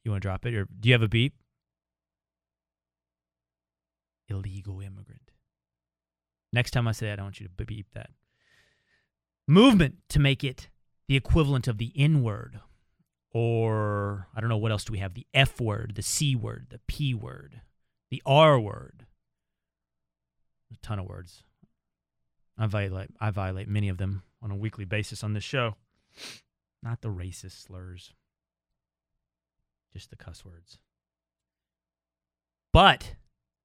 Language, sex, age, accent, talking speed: English, male, 30-49, American, 145 wpm